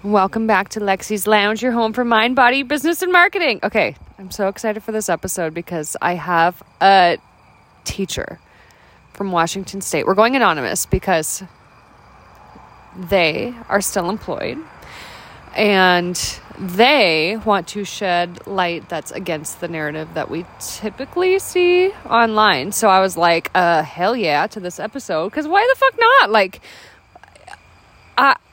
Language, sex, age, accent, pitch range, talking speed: English, female, 20-39, American, 180-230 Hz, 145 wpm